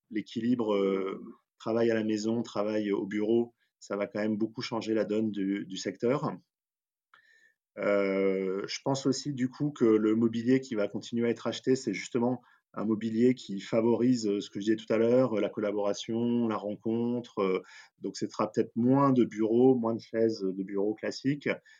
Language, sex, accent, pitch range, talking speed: French, male, French, 100-125 Hz, 175 wpm